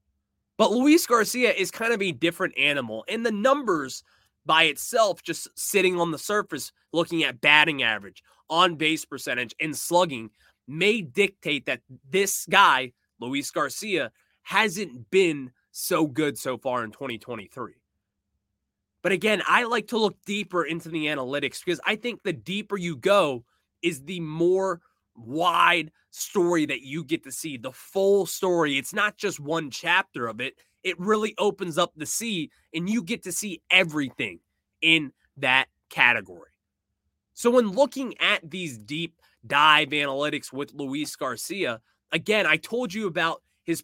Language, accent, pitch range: English, American, 130-195 Hz